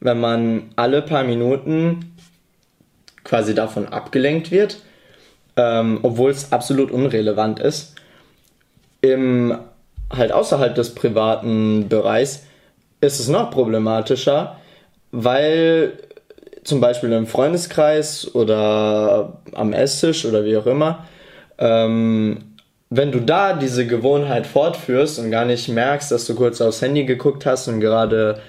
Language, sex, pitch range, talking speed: German, male, 115-145 Hz, 120 wpm